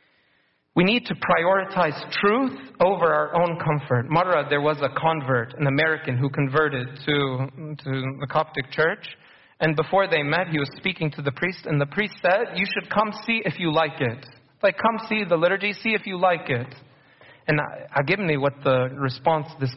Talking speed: 195 wpm